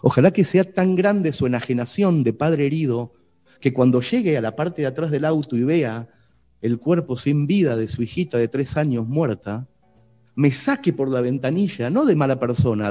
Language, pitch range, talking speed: Italian, 125-175 Hz, 195 wpm